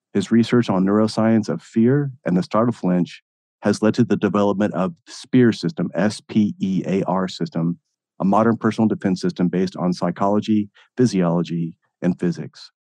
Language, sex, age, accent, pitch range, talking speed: English, male, 40-59, American, 90-105 Hz, 150 wpm